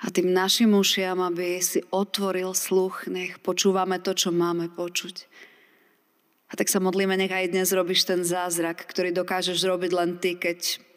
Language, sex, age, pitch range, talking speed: Slovak, female, 30-49, 170-195 Hz, 165 wpm